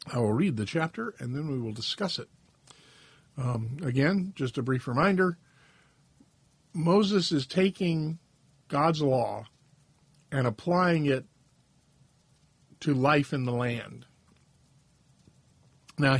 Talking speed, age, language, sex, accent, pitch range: 115 wpm, 50-69, English, male, American, 135-155 Hz